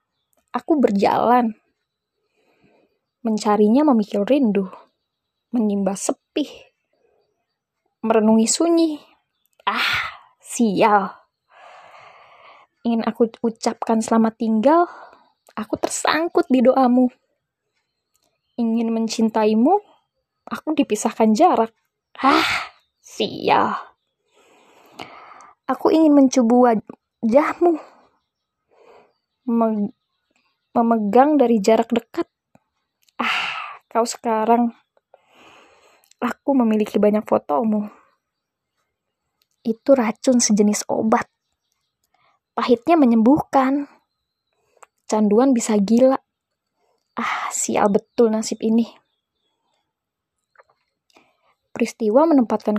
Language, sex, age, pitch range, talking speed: Indonesian, female, 20-39, 225-295 Hz, 65 wpm